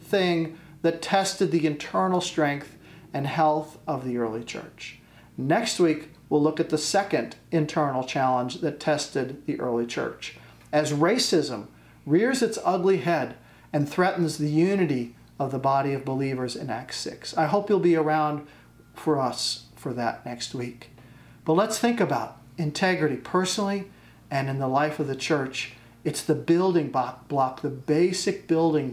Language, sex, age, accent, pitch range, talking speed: English, male, 40-59, American, 135-175 Hz, 155 wpm